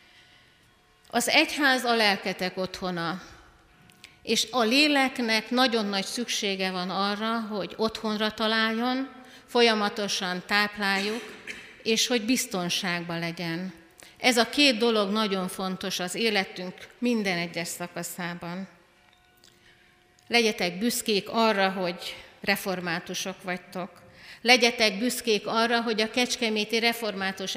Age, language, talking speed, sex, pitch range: 50-69, Hungarian, 100 wpm, female, 185-230 Hz